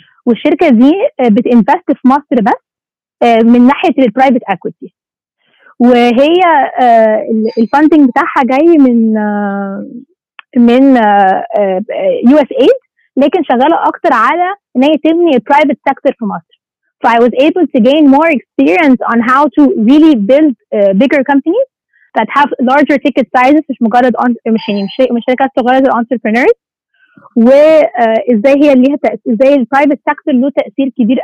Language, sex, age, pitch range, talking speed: Arabic, female, 20-39, 235-290 Hz, 125 wpm